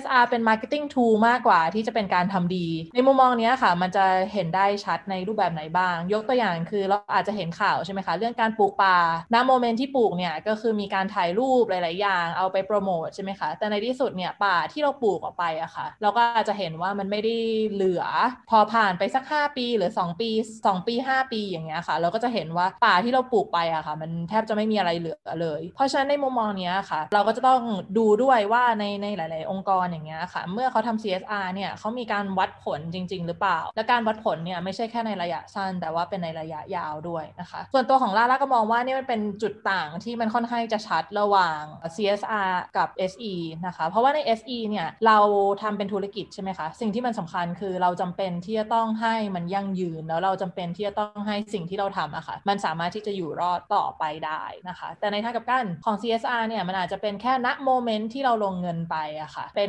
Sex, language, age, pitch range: female, Thai, 20-39, 180-230 Hz